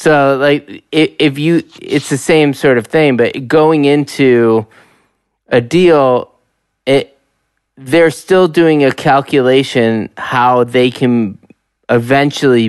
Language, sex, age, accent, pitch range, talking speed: English, male, 20-39, American, 120-145 Hz, 120 wpm